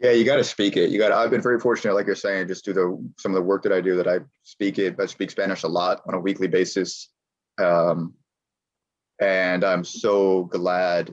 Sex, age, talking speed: male, 20-39, 230 wpm